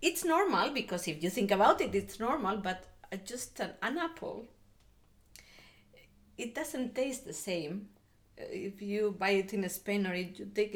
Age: 30-49